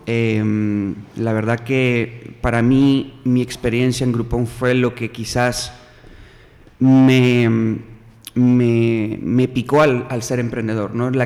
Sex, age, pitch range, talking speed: male, 30-49, 115-125 Hz, 130 wpm